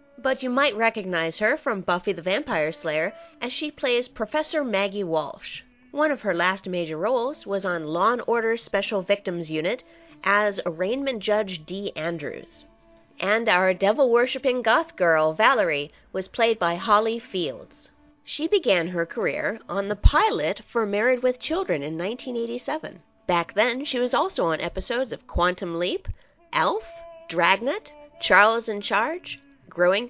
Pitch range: 180-275 Hz